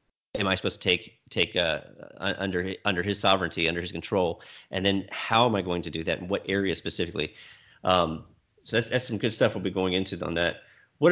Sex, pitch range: male, 95-115 Hz